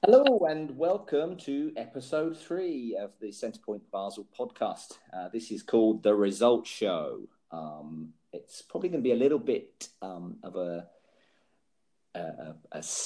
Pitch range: 90-115 Hz